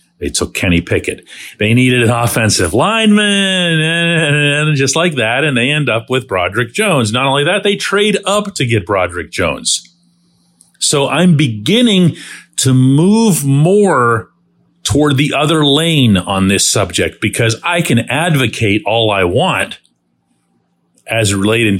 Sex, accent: male, American